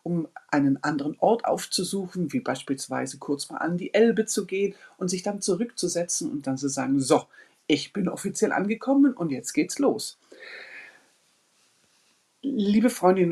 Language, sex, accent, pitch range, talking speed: German, female, German, 145-195 Hz, 150 wpm